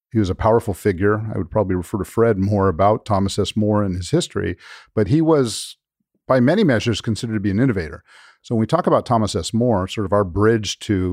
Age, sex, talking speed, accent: 50-69, male, 230 wpm, American